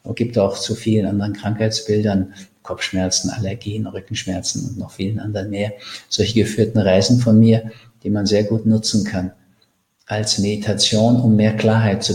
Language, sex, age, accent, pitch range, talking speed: German, male, 50-69, German, 100-115 Hz, 155 wpm